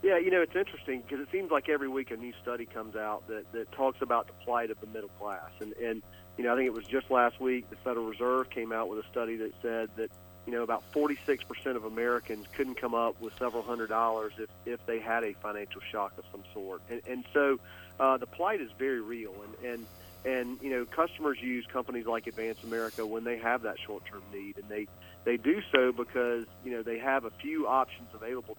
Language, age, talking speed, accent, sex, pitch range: English, 40-59, 235 wpm, American, male, 110-120 Hz